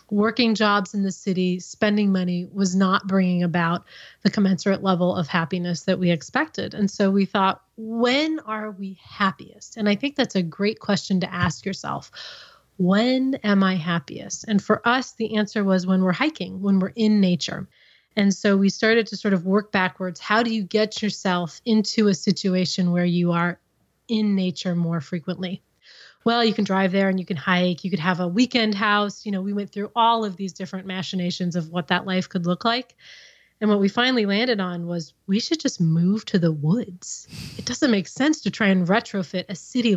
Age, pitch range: 30-49, 185-215 Hz